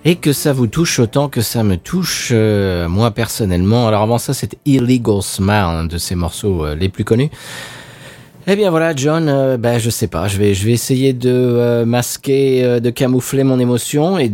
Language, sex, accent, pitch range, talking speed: French, male, French, 95-125 Hz, 215 wpm